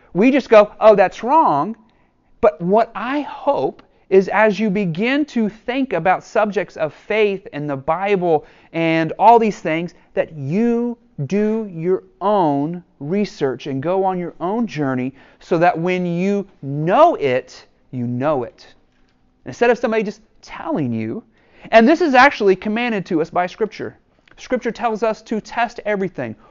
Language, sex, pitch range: English, male, 160-220 Hz